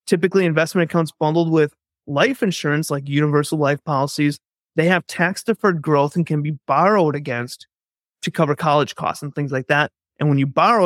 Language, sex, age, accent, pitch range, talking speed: English, male, 30-49, American, 140-175 Hz, 180 wpm